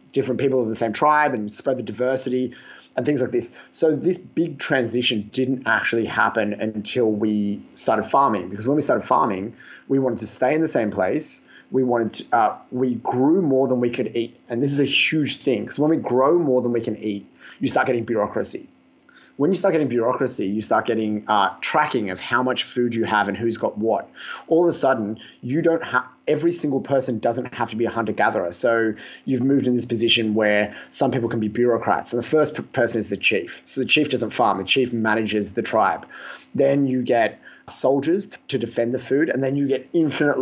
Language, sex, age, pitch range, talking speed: English, male, 30-49, 115-140 Hz, 220 wpm